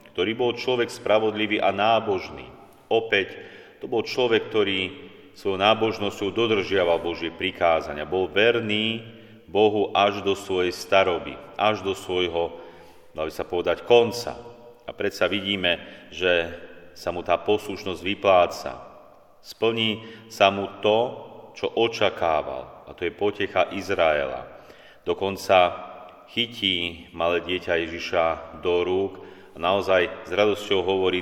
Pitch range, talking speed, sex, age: 90-110 Hz, 120 wpm, male, 40-59